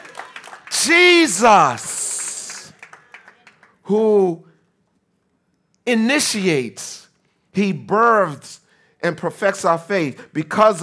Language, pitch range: English, 155-240 Hz